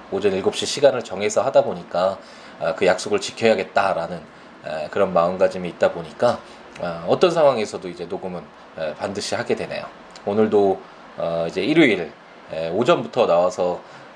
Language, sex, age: Korean, male, 20-39